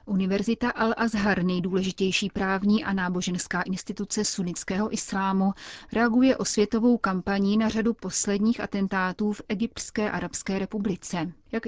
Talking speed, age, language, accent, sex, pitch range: 115 wpm, 30-49, Czech, native, female, 185-215 Hz